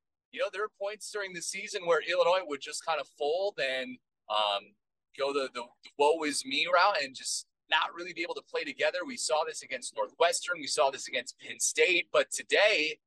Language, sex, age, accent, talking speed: English, male, 30-49, American, 215 wpm